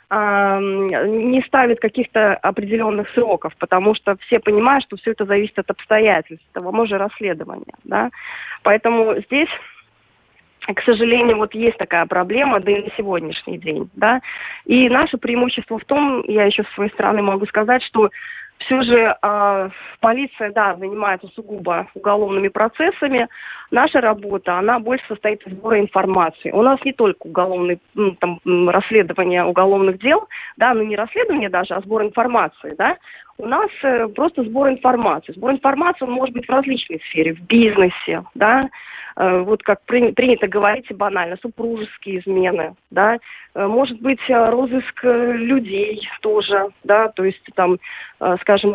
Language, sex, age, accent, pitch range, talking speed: Russian, female, 20-39, native, 195-240 Hz, 145 wpm